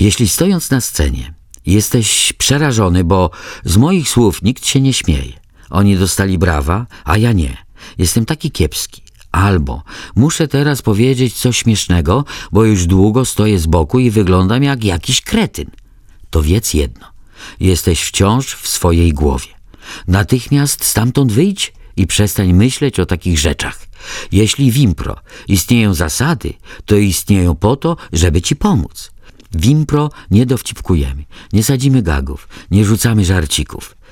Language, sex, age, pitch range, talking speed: Polish, male, 50-69, 85-125 Hz, 135 wpm